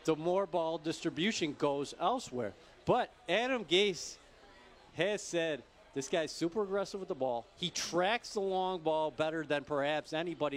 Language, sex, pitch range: English, male, 135-175 Hz